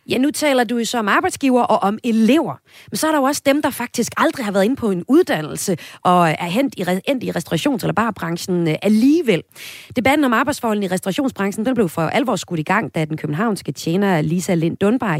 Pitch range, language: 160-230 Hz, Danish